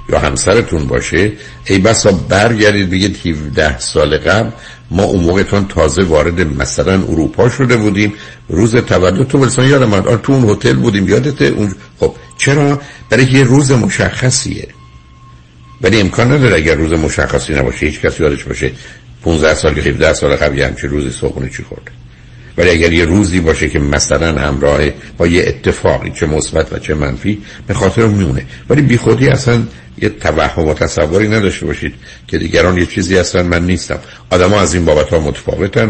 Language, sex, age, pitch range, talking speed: Persian, male, 60-79, 70-105 Hz, 170 wpm